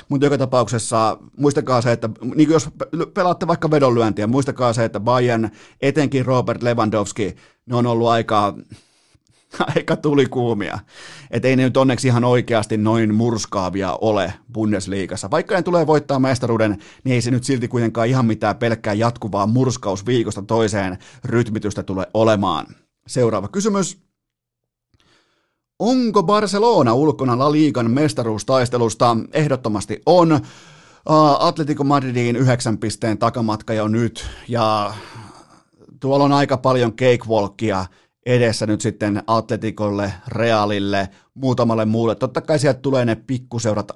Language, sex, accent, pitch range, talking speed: Finnish, male, native, 110-140 Hz, 125 wpm